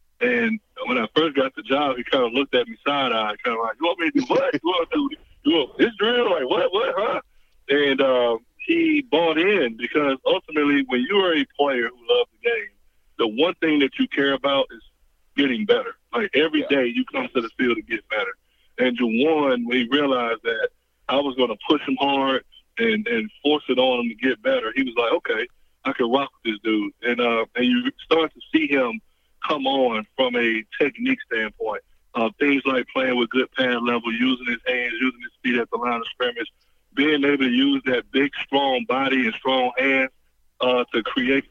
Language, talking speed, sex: English, 220 wpm, male